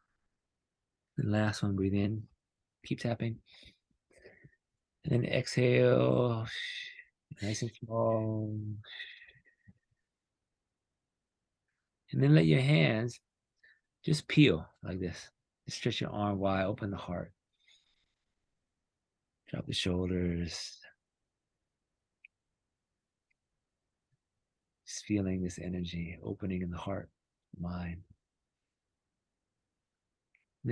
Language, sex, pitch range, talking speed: English, male, 90-115 Hz, 80 wpm